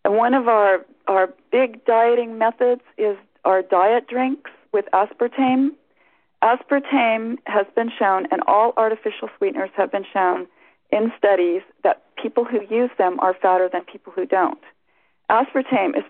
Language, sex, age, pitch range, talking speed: English, female, 40-59, 190-255 Hz, 150 wpm